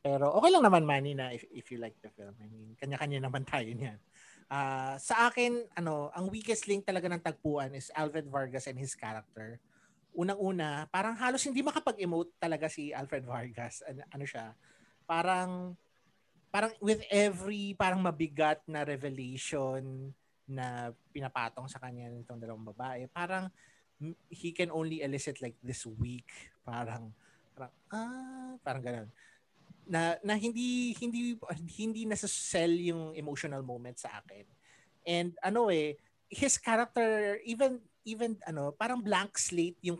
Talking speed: 145 wpm